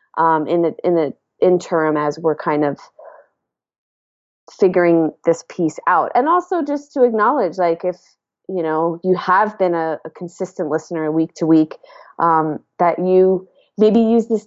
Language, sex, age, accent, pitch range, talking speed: English, female, 30-49, American, 165-210 Hz, 160 wpm